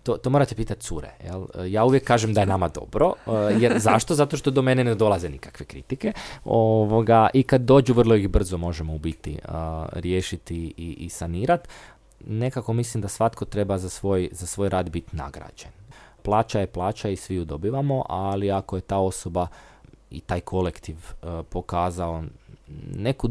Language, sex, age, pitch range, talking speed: Croatian, male, 20-39, 85-110 Hz, 165 wpm